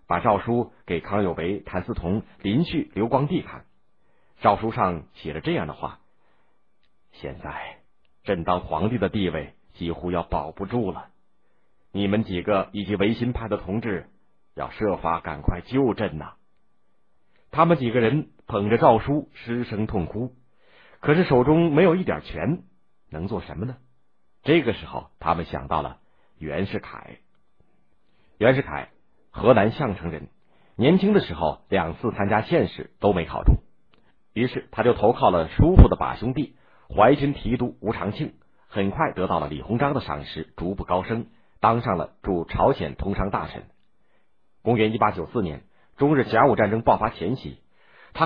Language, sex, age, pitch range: Chinese, male, 50-69, 90-125 Hz